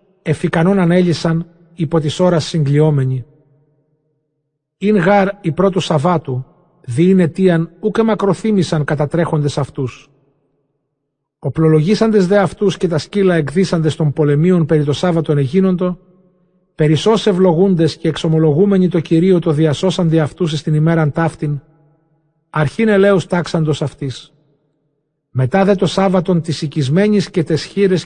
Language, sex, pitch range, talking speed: Greek, male, 155-185 Hz, 120 wpm